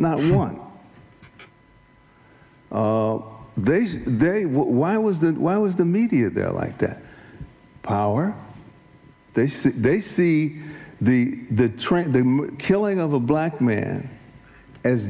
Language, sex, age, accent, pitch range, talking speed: Dutch, male, 60-79, American, 130-175 Hz, 120 wpm